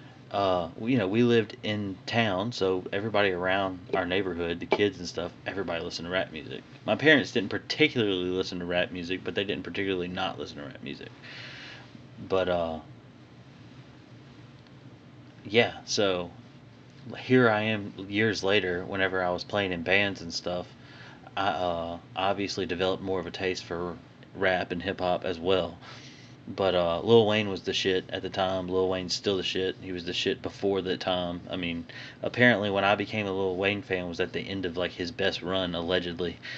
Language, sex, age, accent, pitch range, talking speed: English, male, 30-49, American, 90-110 Hz, 185 wpm